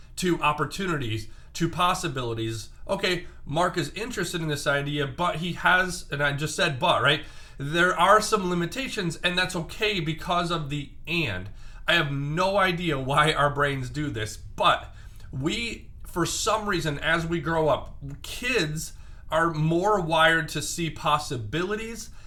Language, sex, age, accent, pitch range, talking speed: English, male, 30-49, American, 140-175 Hz, 150 wpm